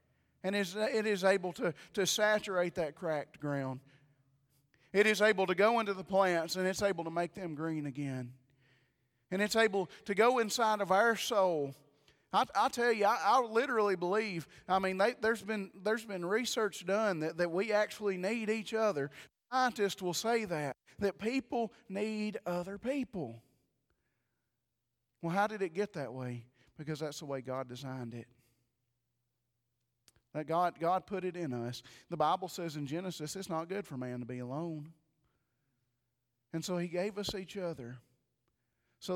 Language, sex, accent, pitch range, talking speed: English, male, American, 135-195 Hz, 165 wpm